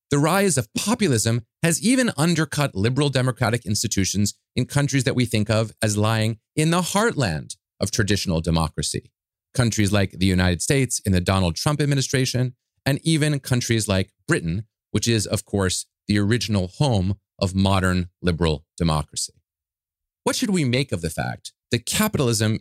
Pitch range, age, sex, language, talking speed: 100-150 Hz, 30-49, male, English, 155 wpm